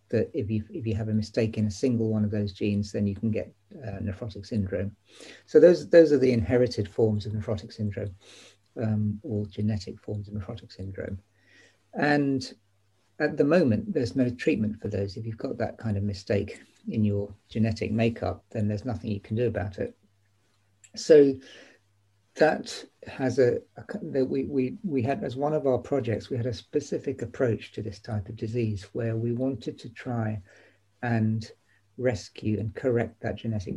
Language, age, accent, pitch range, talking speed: English, 50-69, British, 105-125 Hz, 185 wpm